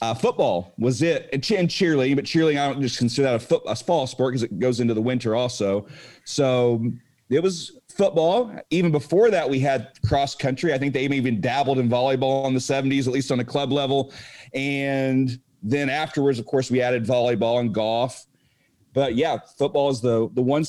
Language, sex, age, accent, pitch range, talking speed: English, male, 40-59, American, 125-155 Hz, 200 wpm